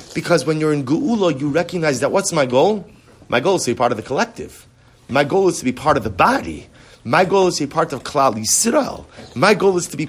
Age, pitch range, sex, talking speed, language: 30-49, 120-155 Hz, male, 255 wpm, English